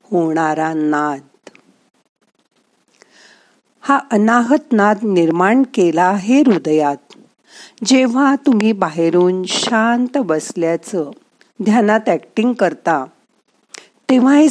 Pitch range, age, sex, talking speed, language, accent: 170-240 Hz, 50-69, female, 65 wpm, Marathi, native